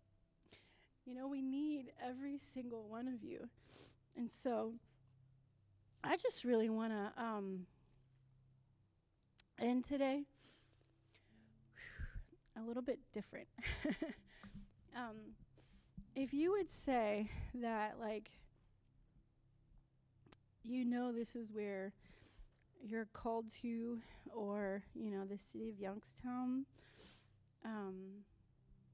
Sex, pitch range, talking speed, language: female, 200-245 Hz, 95 wpm, English